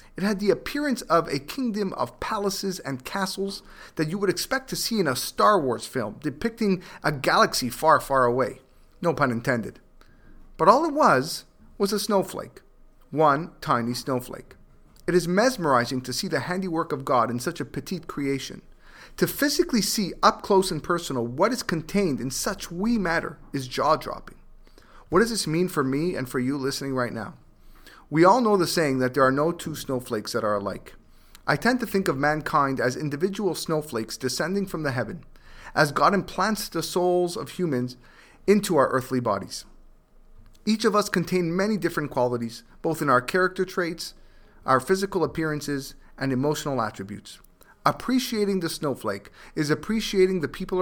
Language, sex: English, male